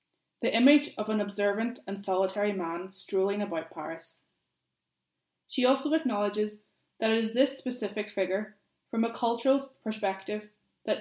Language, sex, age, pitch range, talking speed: English, female, 20-39, 190-240 Hz, 135 wpm